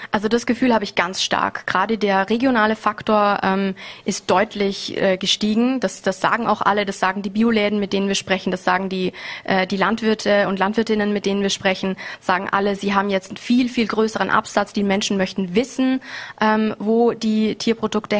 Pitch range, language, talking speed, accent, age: 195-230 Hz, German, 195 wpm, German, 20-39